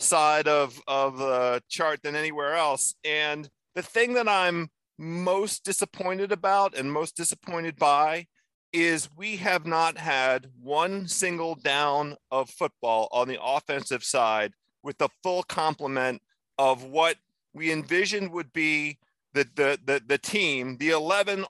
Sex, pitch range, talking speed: male, 150-200 Hz, 140 wpm